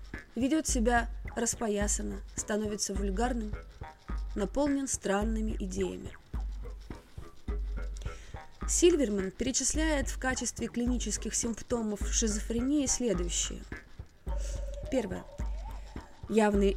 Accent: native